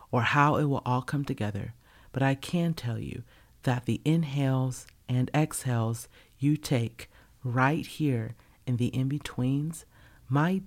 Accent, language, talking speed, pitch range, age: American, English, 140 wpm, 115-140 Hz, 40-59